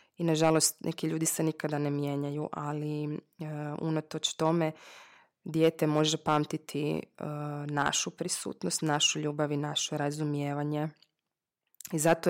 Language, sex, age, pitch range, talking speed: Croatian, female, 20-39, 150-160 Hz, 120 wpm